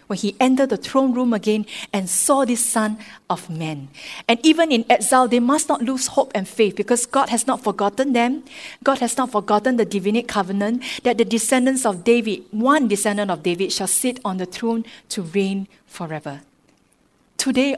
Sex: female